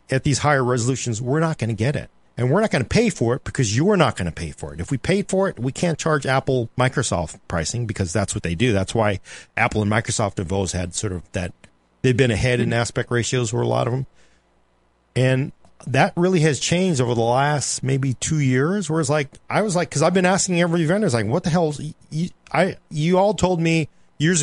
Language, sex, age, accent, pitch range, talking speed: English, male, 40-59, American, 105-160 Hz, 250 wpm